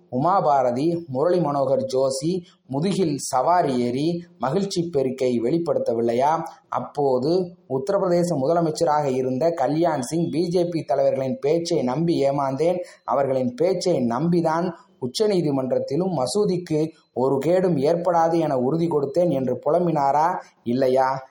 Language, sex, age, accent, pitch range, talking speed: Tamil, male, 20-39, native, 130-175 Hz, 95 wpm